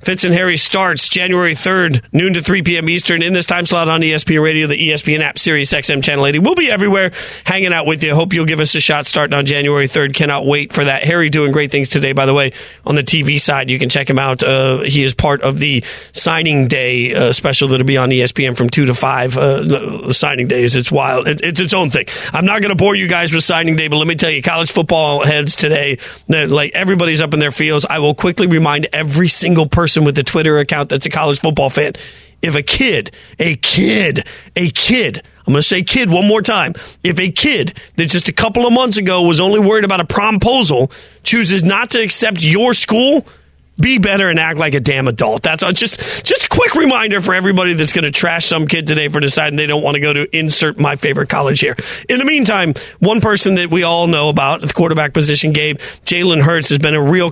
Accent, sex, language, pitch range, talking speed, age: American, male, English, 145-190 Hz, 235 wpm, 40-59